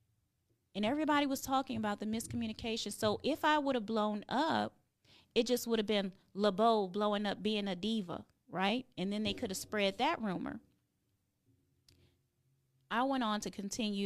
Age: 20-39